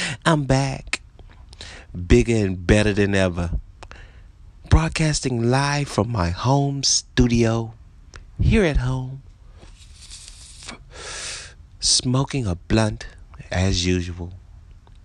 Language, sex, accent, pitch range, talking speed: English, male, American, 90-135 Hz, 85 wpm